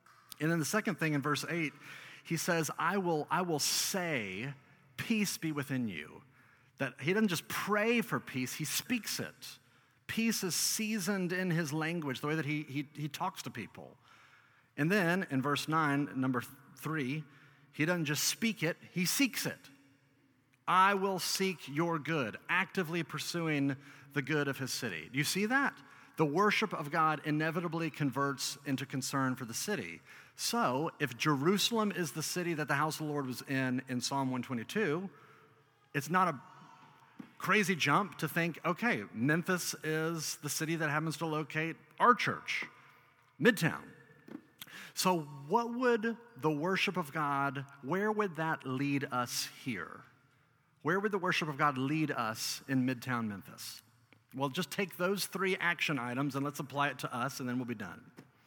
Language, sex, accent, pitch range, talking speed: English, male, American, 140-180 Hz, 170 wpm